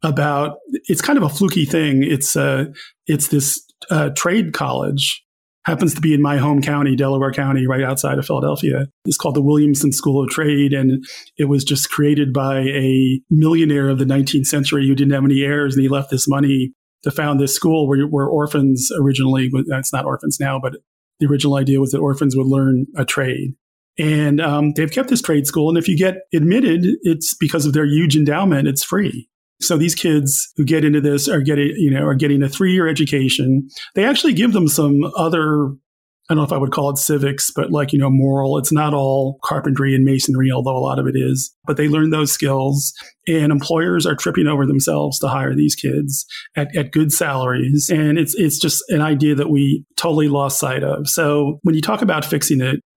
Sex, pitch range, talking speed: male, 135-155 Hz, 210 wpm